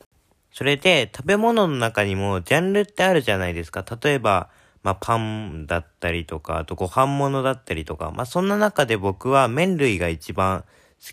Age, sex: 20-39, male